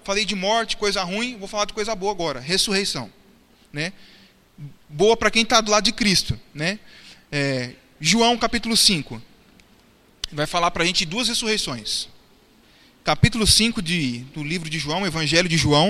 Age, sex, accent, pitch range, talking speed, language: 20-39, male, Brazilian, 165-215 Hz, 160 wpm, Portuguese